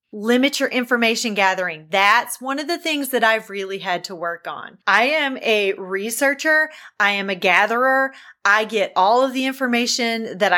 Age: 30-49